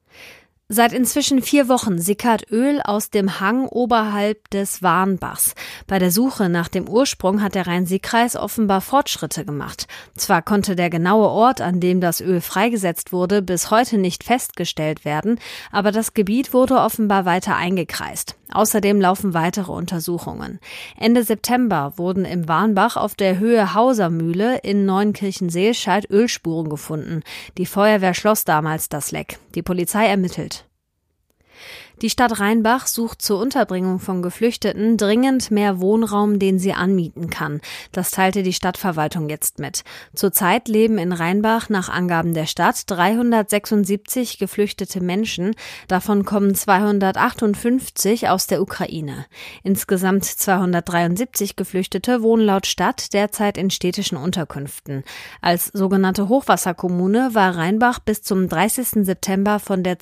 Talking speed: 130 wpm